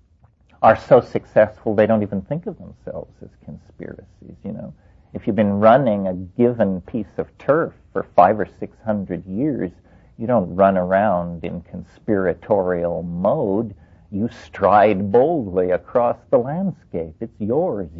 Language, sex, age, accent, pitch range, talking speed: English, male, 50-69, American, 95-135 Hz, 145 wpm